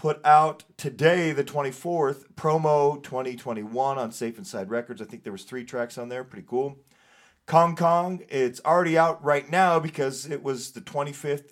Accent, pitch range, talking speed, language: American, 120-155 Hz, 170 wpm, English